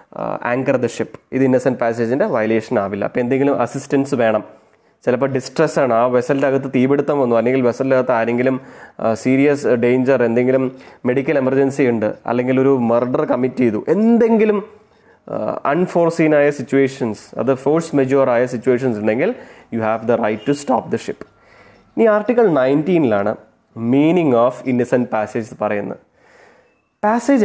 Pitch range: 125-160 Hz